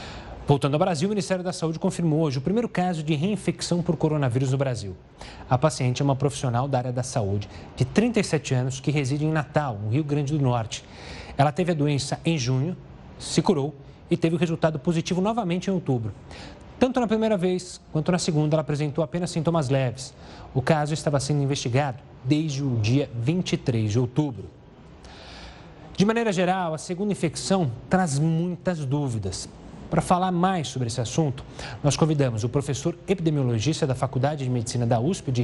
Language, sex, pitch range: Portuguese, male, 135-185 Hz